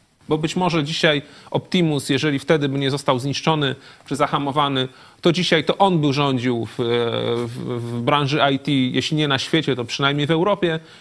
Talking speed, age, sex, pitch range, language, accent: 175 wpm, 30-49, male, 130-165 Hz, Polish, native